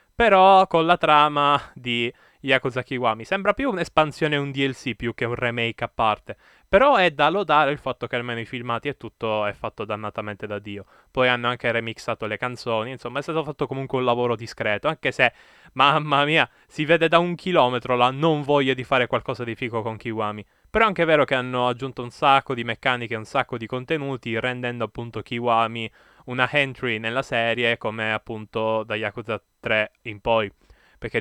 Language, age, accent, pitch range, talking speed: Italian, 20-39, native, 110-135 Hz, 190 wpm